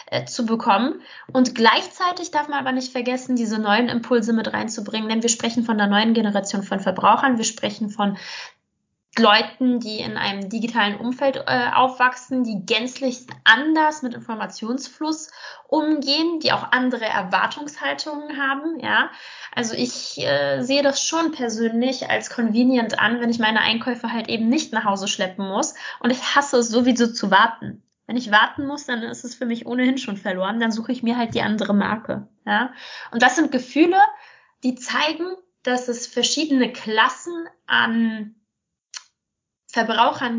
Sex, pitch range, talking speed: female, 225-275 Hz, 160 wpm